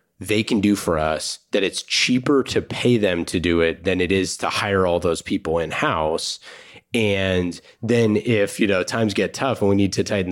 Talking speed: 210 wpm